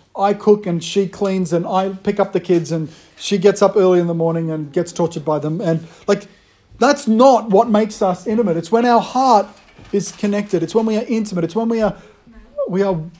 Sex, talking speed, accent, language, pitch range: male, 225 wpm, Australian, English, 165-205 Hz